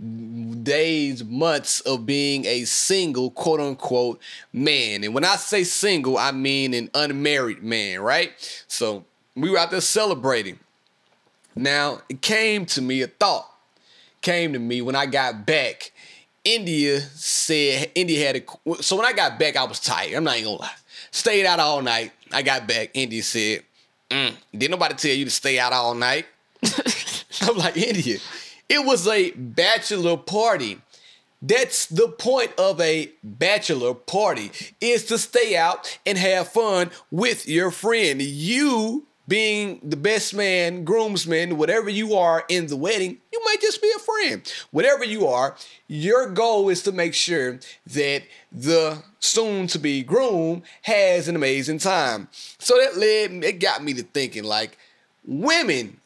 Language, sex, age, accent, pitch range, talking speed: English, male, 30-49, American, 140-215 Hz, 155 wpm